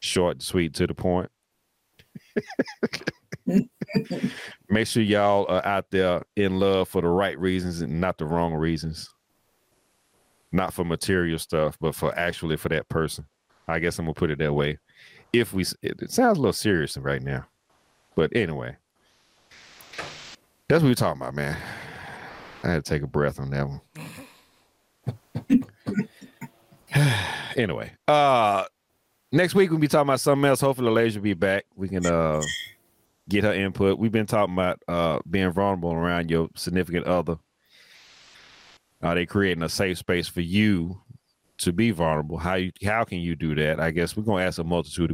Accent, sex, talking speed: American, male, 170 wpm